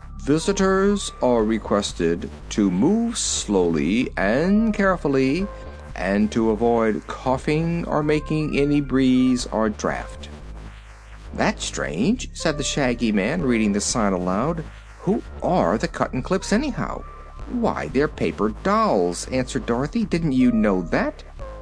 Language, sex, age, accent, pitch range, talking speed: English, male, 50-69, American, 100-150 Hz, 125 wpm